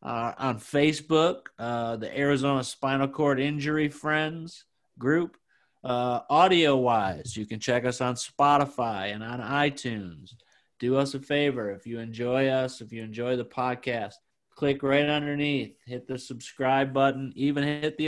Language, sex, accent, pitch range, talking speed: English, male, American, 120-140 Hz, 150 wpm